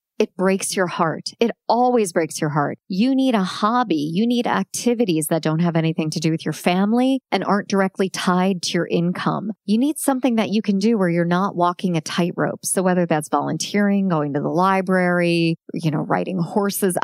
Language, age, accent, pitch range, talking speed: English, 40-59, American, 165-215 Hz, 200 wpm